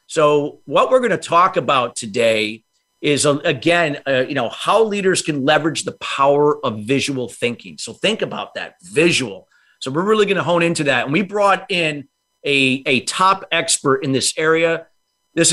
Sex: male